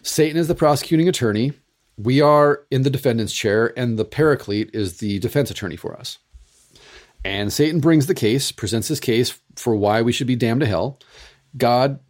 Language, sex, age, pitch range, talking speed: English, male, 40-59, 110-140 Hz, 185 wpm